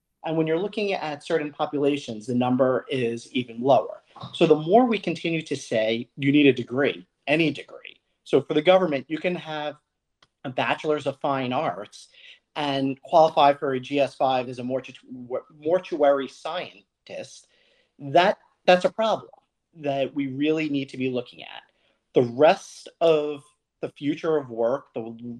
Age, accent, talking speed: 40-59, American, 160 wpm